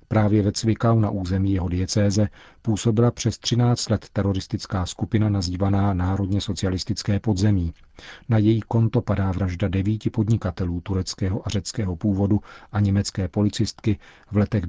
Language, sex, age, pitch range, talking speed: Czech, male, 40-59, 95-110 Hz, 135 wpm